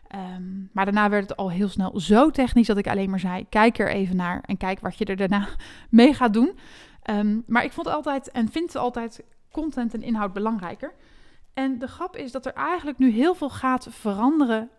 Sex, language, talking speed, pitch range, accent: female, Dutch, 205 wpm, 205-260 Hz, Dutch